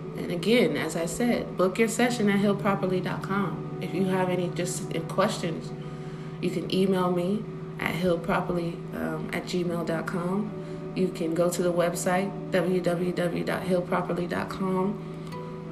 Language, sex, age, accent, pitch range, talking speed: English, female, 30-49, American, 175-185 Hz, 120 wpm